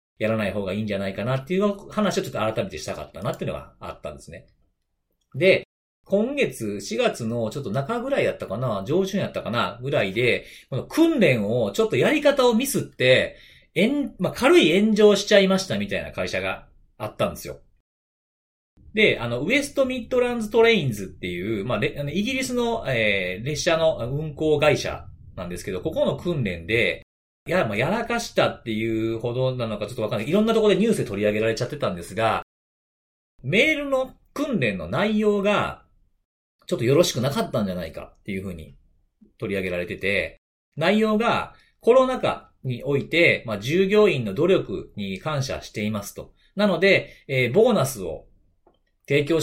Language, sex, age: Japanese, male, 40-59